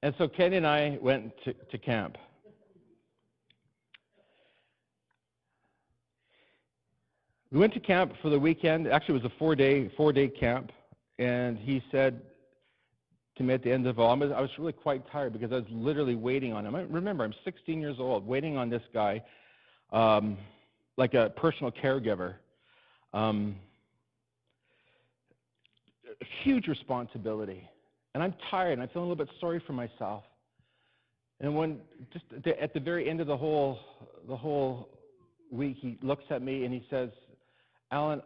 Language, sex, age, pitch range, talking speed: English, male, 40-59, 115-145 Hz, 155 wpm